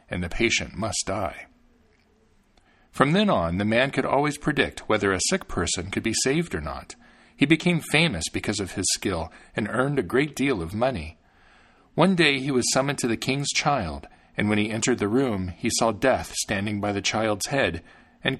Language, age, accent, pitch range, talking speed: English, 50-69, American, 90-145 Hz, 195 wpm